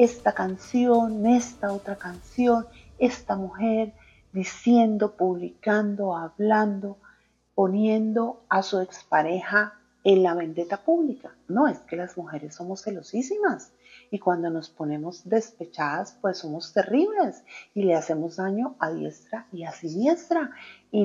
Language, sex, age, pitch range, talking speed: Spanish, female, 40-59, 165-215 Hz, 125 wpm